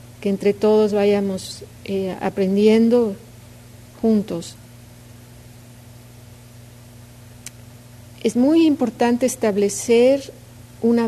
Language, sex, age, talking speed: English, female, 40-59, 65 wpm